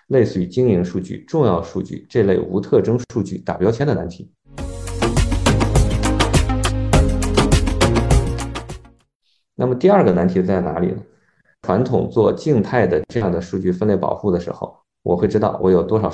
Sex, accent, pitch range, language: male, native, 90-115 Hz, Chinese